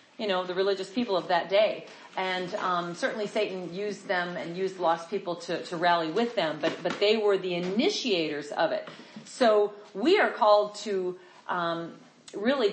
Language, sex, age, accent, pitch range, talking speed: English, female, 40-59, American, 170-230 Hz, 180 wpm